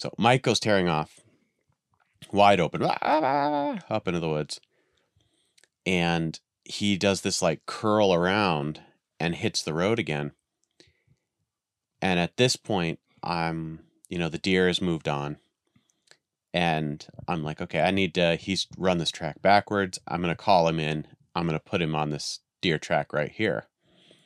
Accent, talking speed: American, 160 wpm